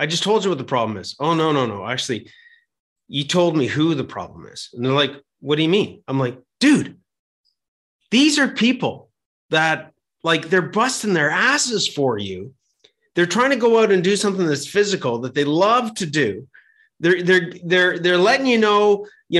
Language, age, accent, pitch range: English, 30-49, American, 140-195 Hz